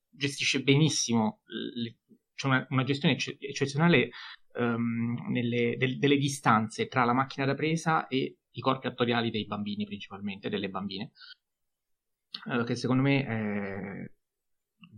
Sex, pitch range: male, 105-130 Hz